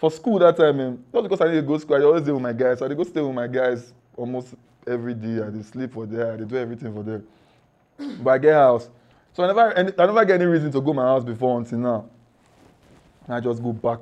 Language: English